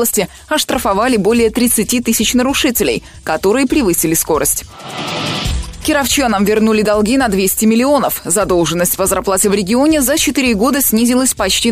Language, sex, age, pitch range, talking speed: Russian, female, 20-39, 195-265 Hz, 125 wpm